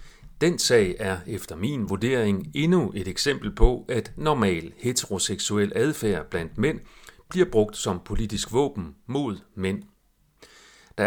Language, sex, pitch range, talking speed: Danish, male, 100-140 Hz, 130 wpm